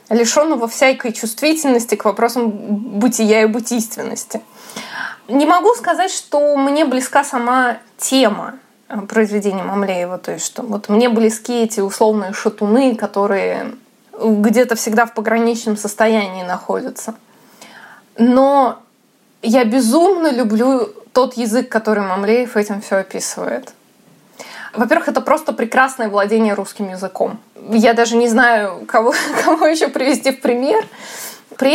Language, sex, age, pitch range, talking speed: Russian, female, 20-39, 220-270 Hz, 120 wpm